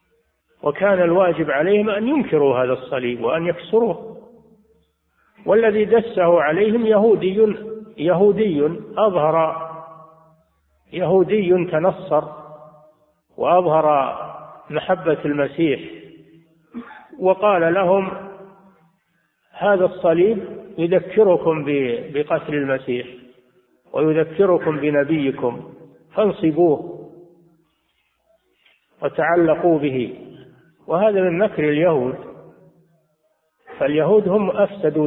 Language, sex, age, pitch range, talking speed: Arabic, male, 50-69, 150-195 Hz, 65 wpm